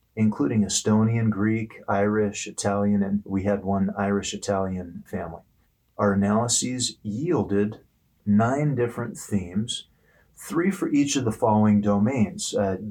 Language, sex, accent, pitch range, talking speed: English, male, American, 100-110 Hz, 115 wpm